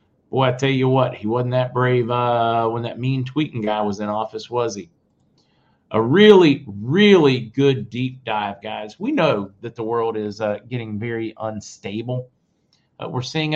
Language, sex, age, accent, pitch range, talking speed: English, male, 50-69, American, 110-135 Hz, 175 wpm